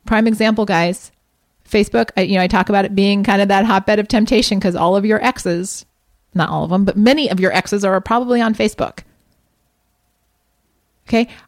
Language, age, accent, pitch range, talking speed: English, 30-49, American, 205-285 Hz, 190 wpm